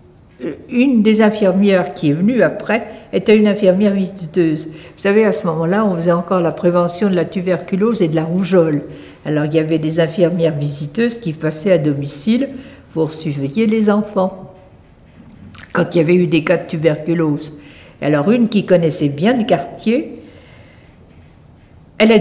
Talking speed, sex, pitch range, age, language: 170 wpm, female, 175-225 Hz, 60-79, French